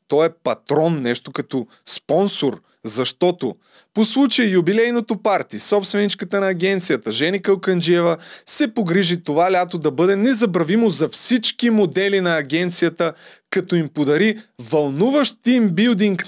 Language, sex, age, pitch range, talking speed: Bulgarian, male, 20-39, 135-195 Hz, 120 wpm